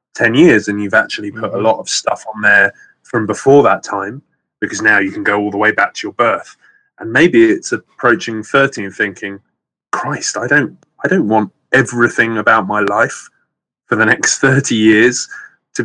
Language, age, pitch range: English, 20-39, 110-145 Hz